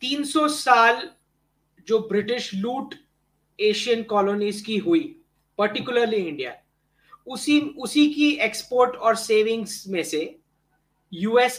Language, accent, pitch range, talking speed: English, Indian, 175-230 Hz, 105 wpm